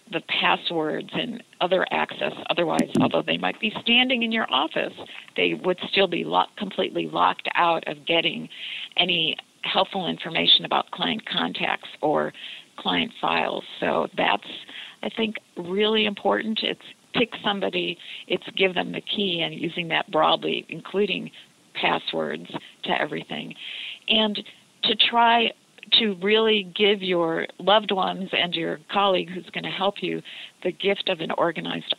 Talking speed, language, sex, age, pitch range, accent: 145 wpm, English, female, 50-69, 175-210 Hz, American